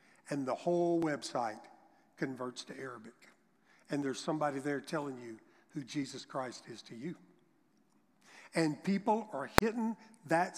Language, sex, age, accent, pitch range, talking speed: English, male, 50-69, American, 150-195 Hz, 135 wpm